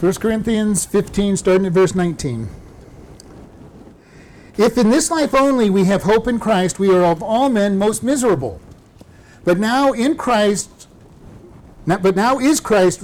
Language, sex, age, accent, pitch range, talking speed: English, male, 50-69, American, 165-215 Hz, 145 wpm